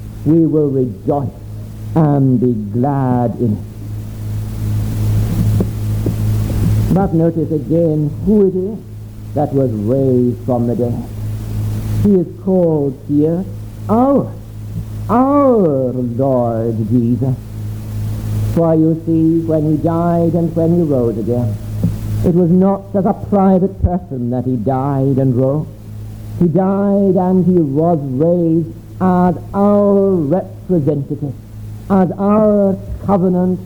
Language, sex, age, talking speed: English, male, 60-79, 115 wpm